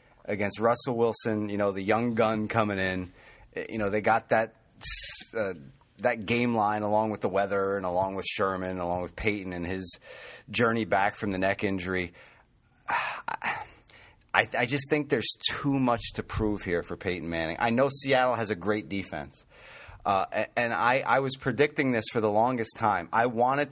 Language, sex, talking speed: English, male, 185 wpm